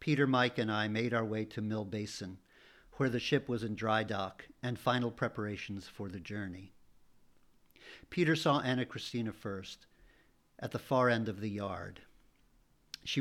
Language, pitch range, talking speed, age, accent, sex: English, 105-140 Hz, 165 wpm, 50-69, American, male